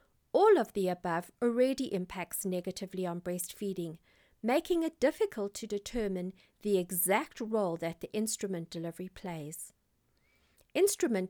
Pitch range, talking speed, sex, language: 185-255 Hz, 120 wpm, female, English